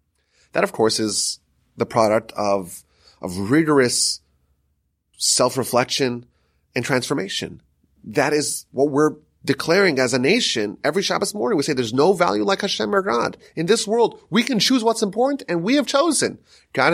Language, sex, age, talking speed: English, male, 30-49, 160 wpm